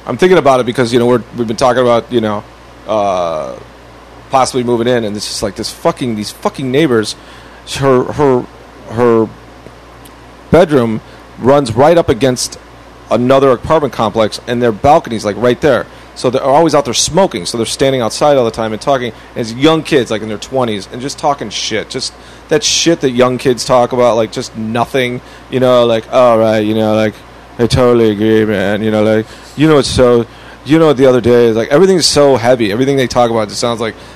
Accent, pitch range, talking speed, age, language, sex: American, 110-135 Hz, 205 wpm, 30-49, English, male